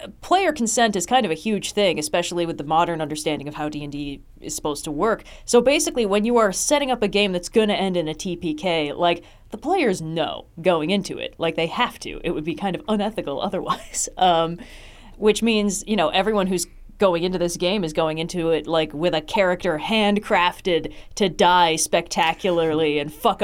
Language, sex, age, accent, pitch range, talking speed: English, female, 30-49, American, 160-210 Hz, 200 wpm